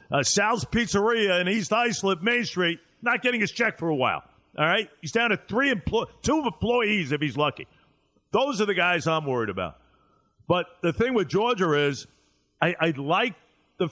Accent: American